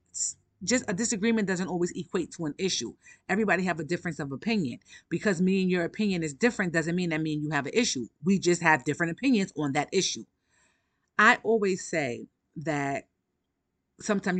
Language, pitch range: English, 155-195 Hz